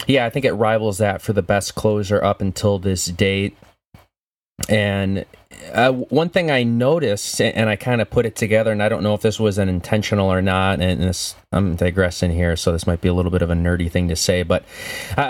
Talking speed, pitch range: 225 wpm, 90-110 Hz